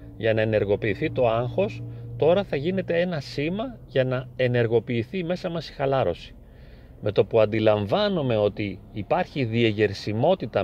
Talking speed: 135 wpm